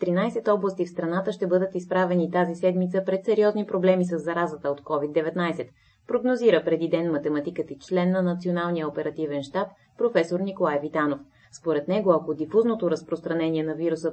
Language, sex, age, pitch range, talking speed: Bulgarian, female, 20-39, 160-205 Hz, 155 wpm